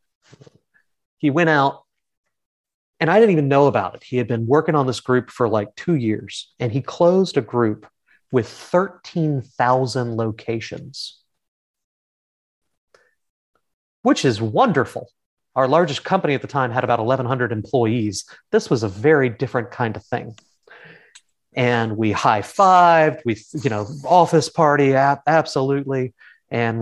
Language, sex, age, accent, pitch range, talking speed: English, male, 30-49, American, 110-140 Hz, 135 wpm